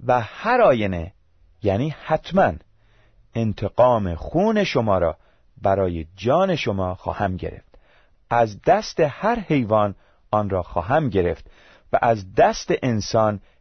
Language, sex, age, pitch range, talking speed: Persian, male, 30-49, 90-135 Hz, 115 wpm